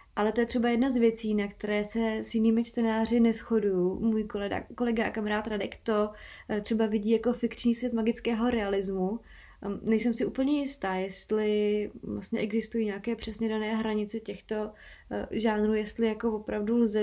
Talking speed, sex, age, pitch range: 160 wpm, female, 20-39, 200-230 Hz